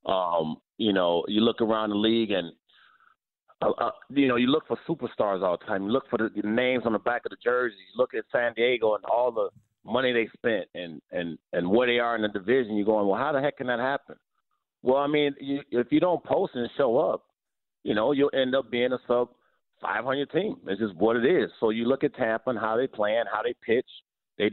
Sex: male